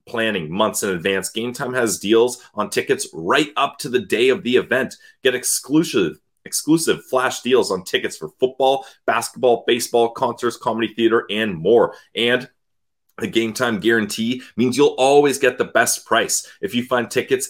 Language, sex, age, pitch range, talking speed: English, male, 30-49, 115-160 Hz, 170 wpm